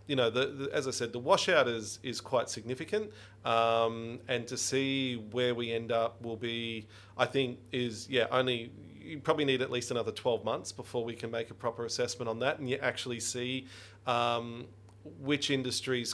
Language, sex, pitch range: English, male, 115-130 Hz